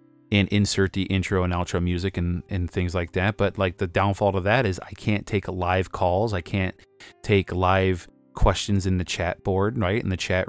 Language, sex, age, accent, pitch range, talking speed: English, male, 30-49, American, 95-110 Hz, 210 wpm